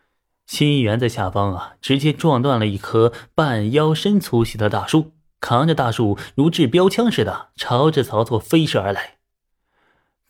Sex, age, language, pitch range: male, 20-39, Chinese, 110-155 Hz